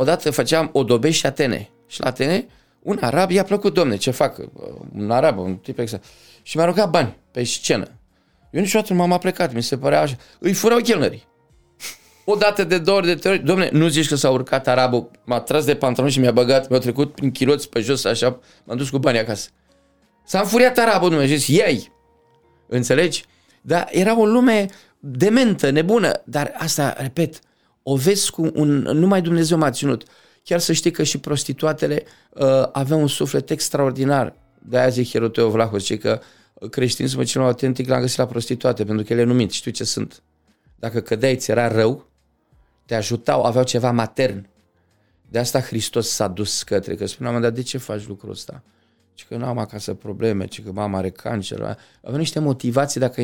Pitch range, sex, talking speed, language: 115-155 Hz, male, 185 wpm, Romanian